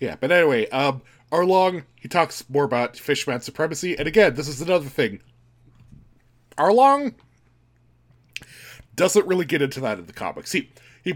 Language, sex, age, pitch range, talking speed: English, male, 20-39, 120-165 Hz, 150 wpm